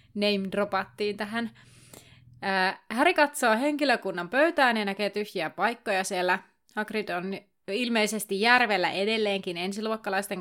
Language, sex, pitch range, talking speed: Finnish, female, 180-220 Hz, 110 wpm